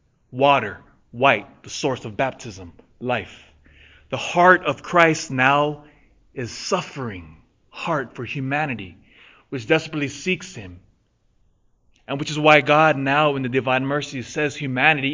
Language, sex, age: English, male, 20-39